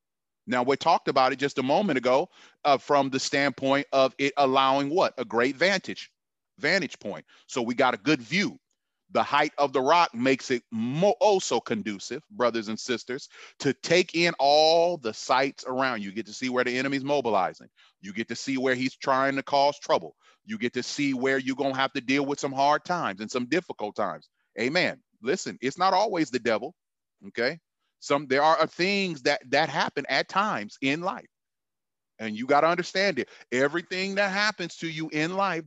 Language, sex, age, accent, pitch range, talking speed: English, male, 30-49, American, 125-150 Hz, 195 wpm